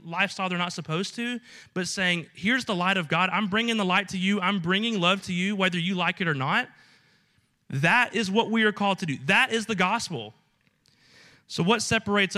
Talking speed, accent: 215 wpm, American